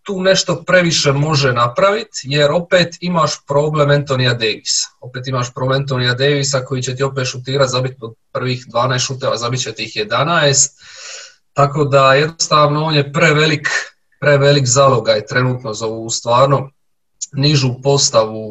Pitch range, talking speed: 125-145 Hz, 140 wpm